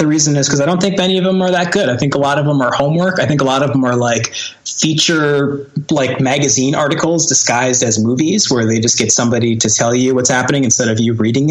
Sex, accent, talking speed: male, American, 260 wpm